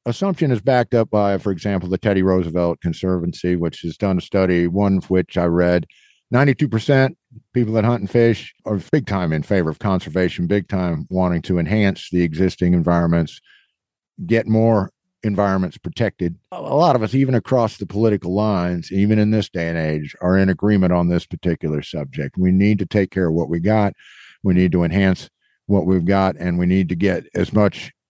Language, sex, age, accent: English, male, 50-69, American